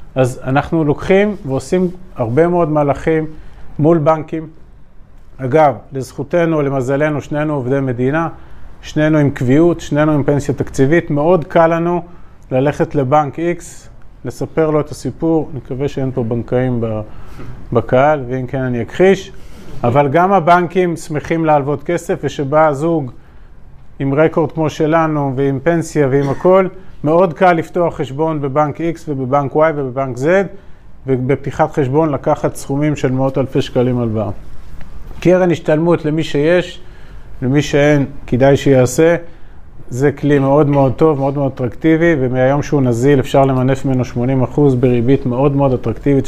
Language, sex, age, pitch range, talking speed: Hebrew, male, 40-59, 130-160 Hz, 135 wpm